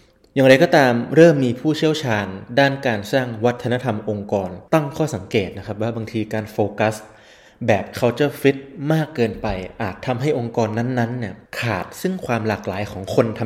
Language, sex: Thai, male